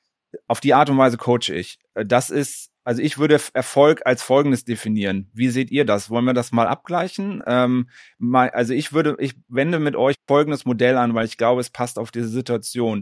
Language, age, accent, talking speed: German, 30-49, German, 205 wpm